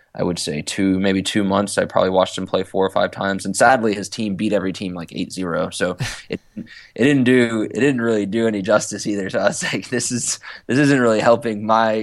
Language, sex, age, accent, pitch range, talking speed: English, male, 20-39, American, 95-110 Hz, 245 wpm